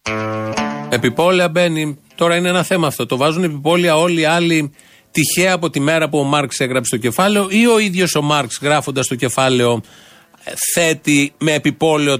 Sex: male